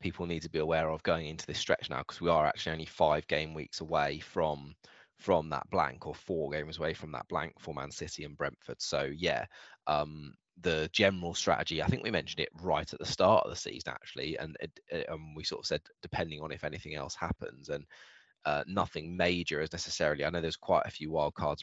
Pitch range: 75-85 Hz